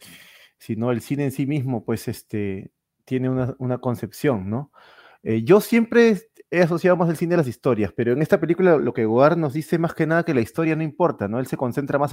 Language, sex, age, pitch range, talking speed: Spanish, male, 30-49, 115-145 Hz, 235 wpm